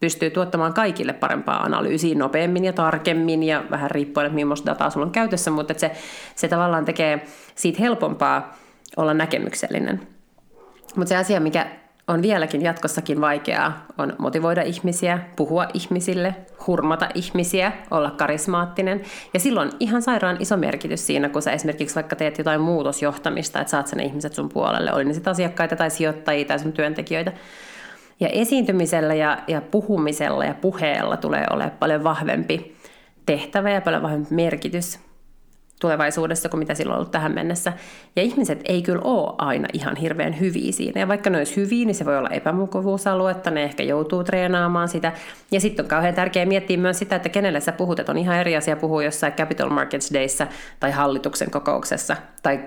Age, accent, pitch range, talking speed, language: 30-49, native, 155-185 Hz, 165 wpm, Finnish